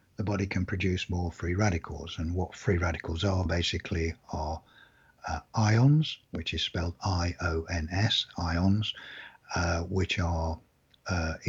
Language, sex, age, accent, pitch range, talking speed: English, male, 50-69, British, 85-105 Hz, 125 wpm